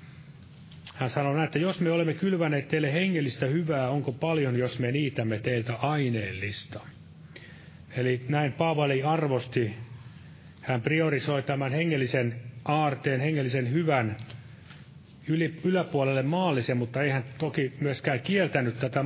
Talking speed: 115 wpm